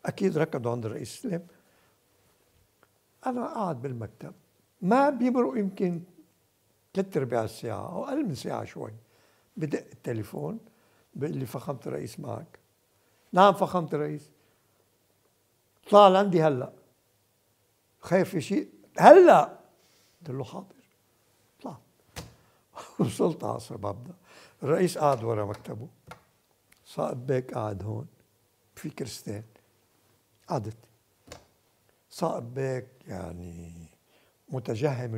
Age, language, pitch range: 60-79, Arabic, 110-160 Hz